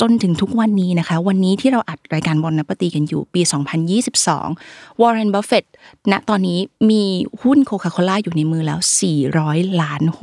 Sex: female